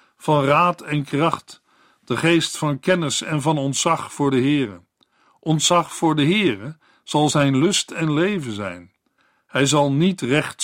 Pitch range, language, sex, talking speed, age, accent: 130-165 Hz, Dutch, male, 160 wpm, 50-69, Dutch